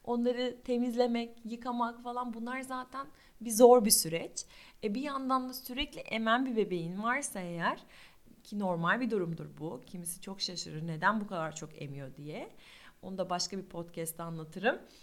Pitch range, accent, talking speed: 195-255 Hz, native, 160 wpm